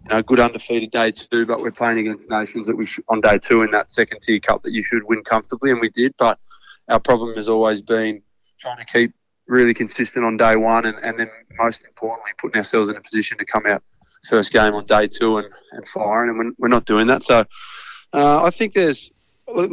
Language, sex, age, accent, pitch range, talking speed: English, male, 20-39, Australian, 110-120 Hz, 230 wpm